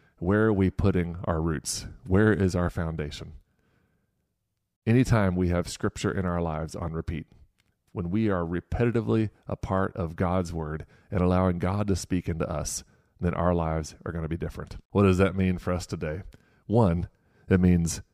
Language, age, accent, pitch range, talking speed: English, 30-49, American, 85-100 Hz, 175 wpm